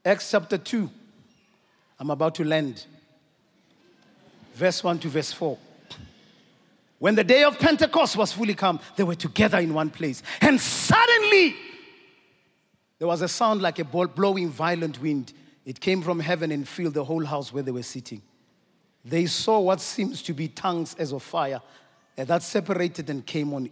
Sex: male